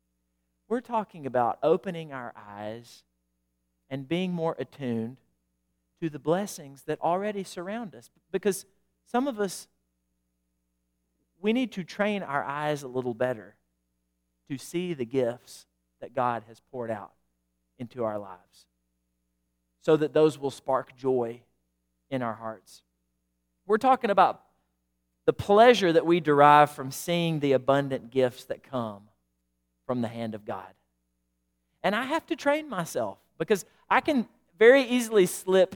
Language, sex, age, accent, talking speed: English, male, 40-59, American, 140 wpm